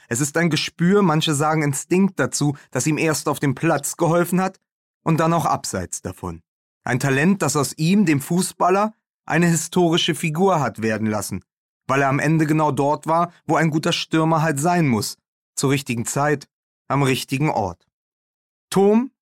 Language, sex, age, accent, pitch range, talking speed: German, male, 30-49, German, 125-165 Hz, 170 wpm